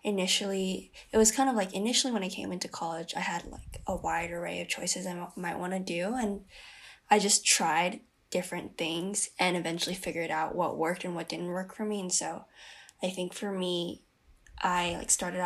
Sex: female